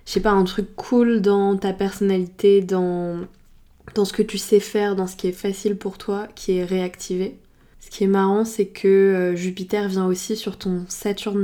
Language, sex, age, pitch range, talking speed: French, female, 20-39, 185-205 Hz, 205 wpm